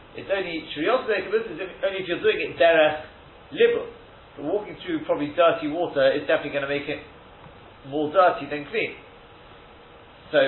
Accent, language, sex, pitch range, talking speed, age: British, English, male, 130-180 Hz, 155 wpm, 40-59